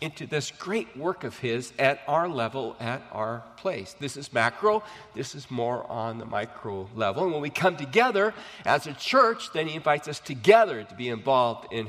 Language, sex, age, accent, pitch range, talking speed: English, male, 40-59, American, 125-185 Hz, 195 wpm